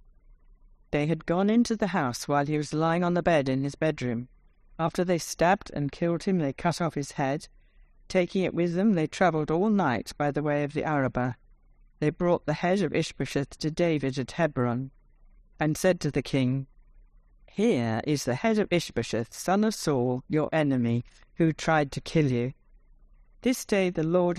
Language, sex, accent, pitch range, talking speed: English, female, British, 135-175 Hz, 185 wpm